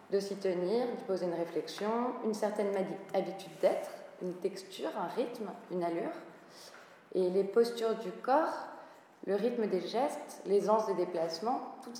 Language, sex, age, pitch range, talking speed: French, female, 20-39, 190-235 Hz, 155 wpm